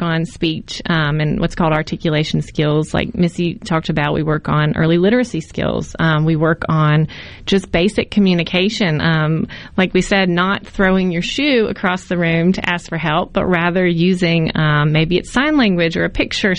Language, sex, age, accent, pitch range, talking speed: English, female, 30-49, American, 165-195 Hz, 185 wpm